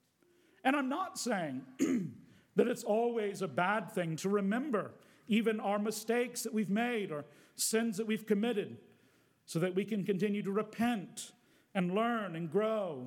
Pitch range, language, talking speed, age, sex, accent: 180-235 Hz, English, 155 wpm, 50-69, male, American